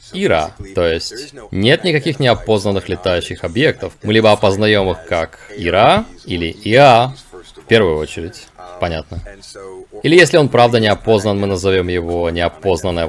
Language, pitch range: Russian, 90-130 Hz